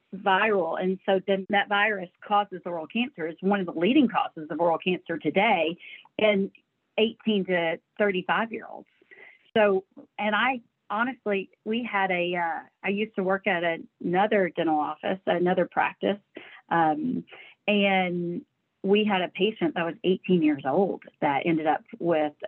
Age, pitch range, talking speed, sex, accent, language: 40-59, 170-210 Hz, 160 wpm, female, American, English